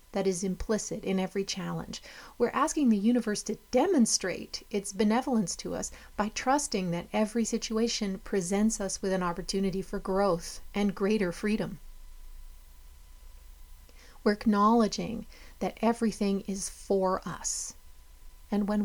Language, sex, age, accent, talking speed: English, female, 40-59, American, 125 wpm